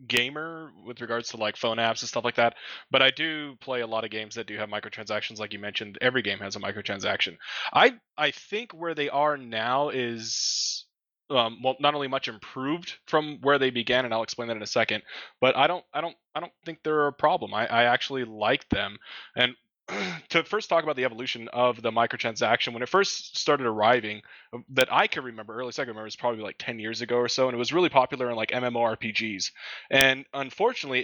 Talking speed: 220 wpm